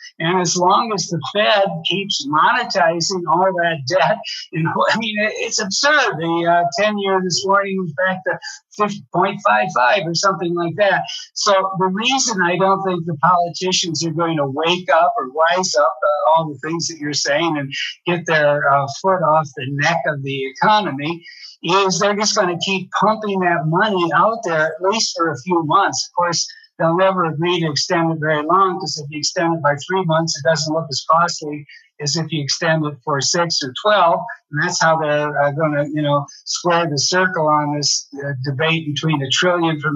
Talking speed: 200 wpm